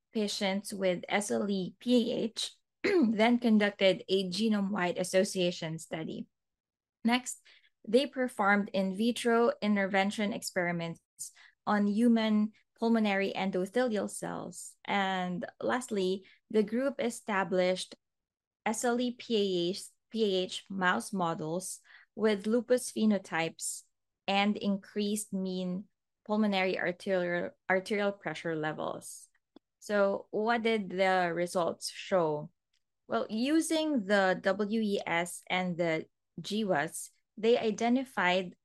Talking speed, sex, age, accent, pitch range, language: 85 wpm, female, 20-39, Filipino, 180-220 Hz, English